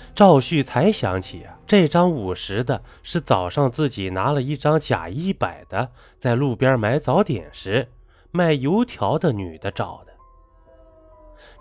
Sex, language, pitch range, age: male, Chinese, 95-145 Hz, 20-39